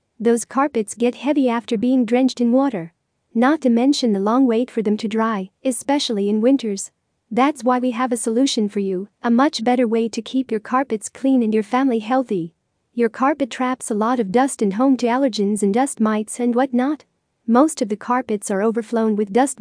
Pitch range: 220-260 Hz